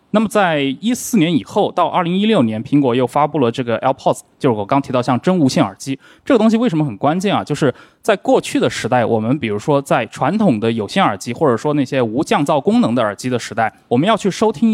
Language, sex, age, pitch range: Chinese, male, 20-39, 120-185 Hz